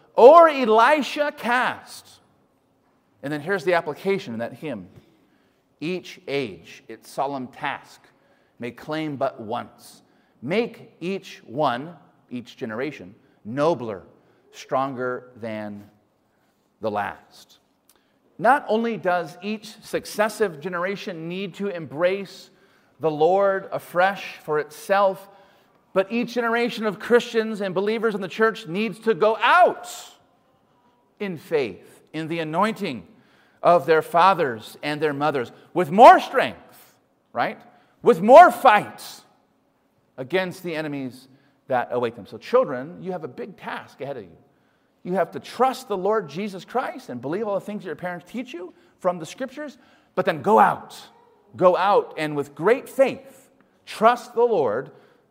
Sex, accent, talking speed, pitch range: male, American, 135 wpm, 155-230 Hz